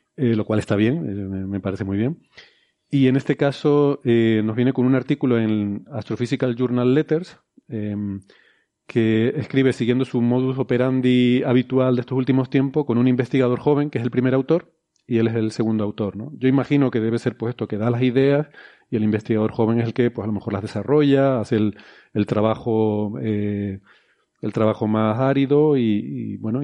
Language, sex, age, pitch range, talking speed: Spanish, male, 40-59, 110-130 Hz, 195 wpm